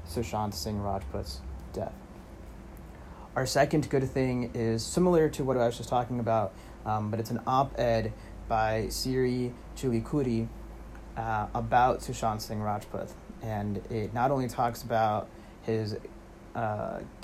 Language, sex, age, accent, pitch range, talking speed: English, male, 30-49, American, 110-120 Hz, 130 wpm